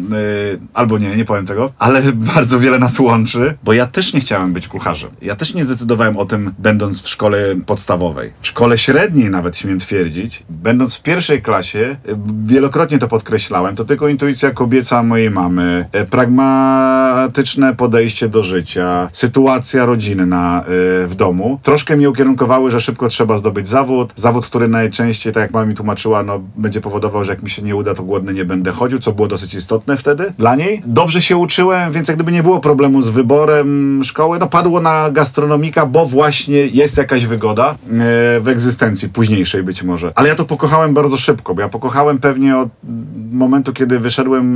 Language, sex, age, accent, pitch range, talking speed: Polish, male, 40-59, native, 105-135 Hz, 175 wpm